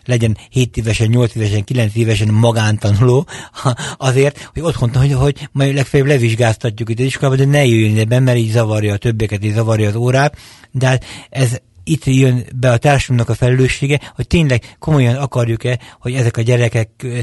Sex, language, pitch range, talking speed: male, Hungarian, 115-135 Hz, 170 wpm